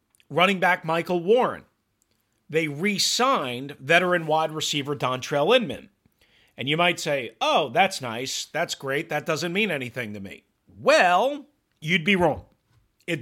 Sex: male